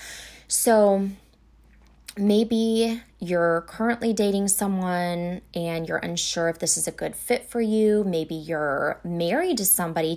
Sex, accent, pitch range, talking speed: female, American, 165-215 Hz, 130 wpm